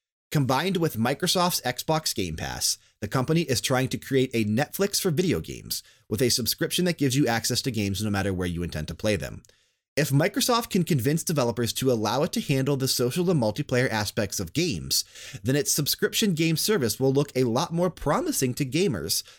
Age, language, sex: 30-49, English, male